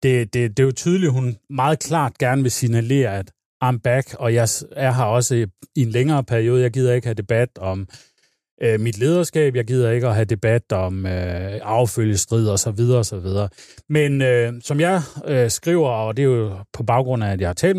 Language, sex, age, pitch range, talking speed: Danish, male, 30-49, 110-140 Hz, 225 wpm